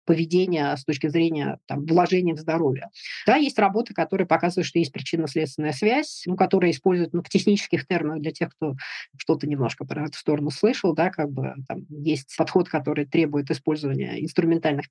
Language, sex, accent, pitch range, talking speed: Russian, female, native, 155-185 Hz, 170 wpm